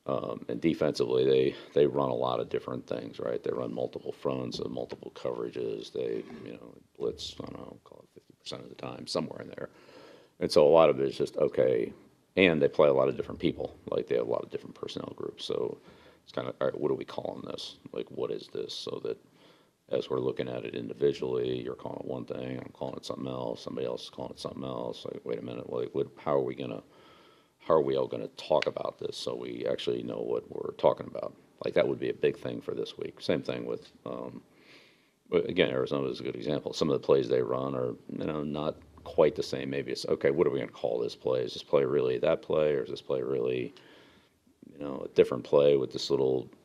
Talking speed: 245 wpm